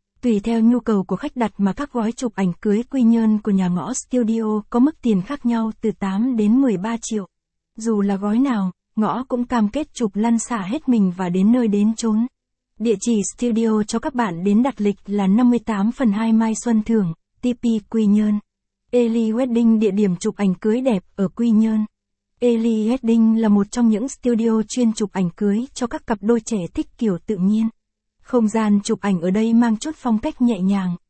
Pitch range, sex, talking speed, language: 205-240 Hz, female, 210 wpm, Vietnamese